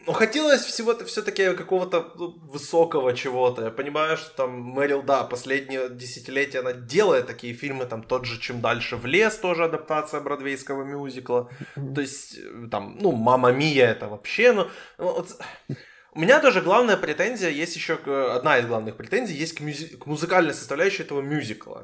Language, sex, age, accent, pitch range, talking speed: Ukrainian, male, 20-39, native, 130-170 Hz, 165 wpm